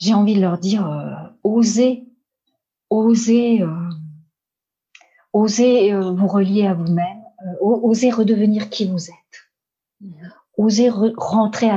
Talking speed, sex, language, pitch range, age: 105 wpm, female, French, 170-225 Hz, 40-59